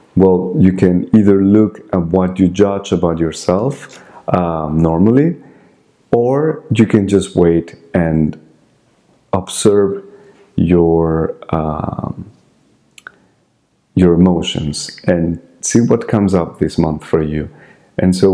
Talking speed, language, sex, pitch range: 115 wpm, English, male, 80-100 Hz